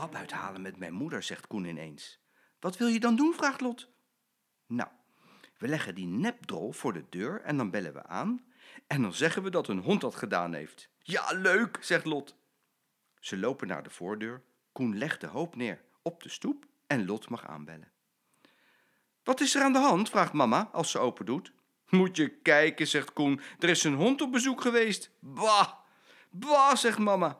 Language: Dutch